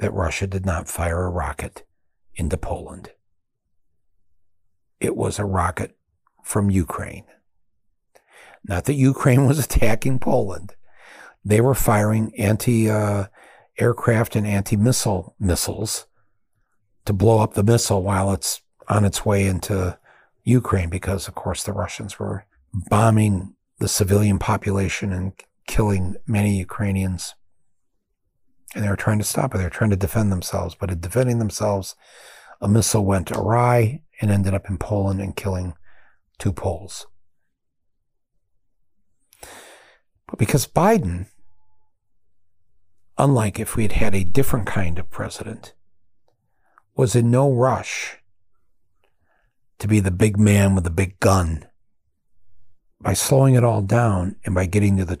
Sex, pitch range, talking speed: male, 90-110 Hz, 130 wpm